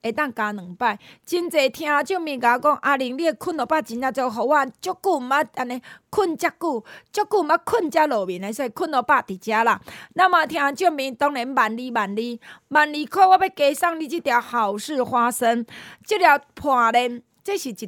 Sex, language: female, Chinese